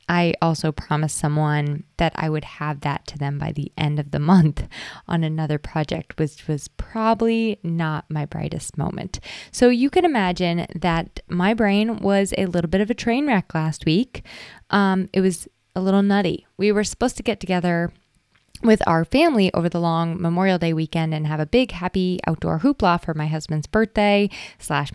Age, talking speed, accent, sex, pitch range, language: 20-39, 190 wpm, American, female, 155-205 Hz, English